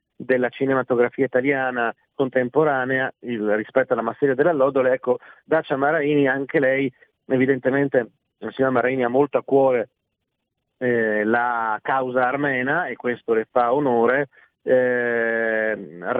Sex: male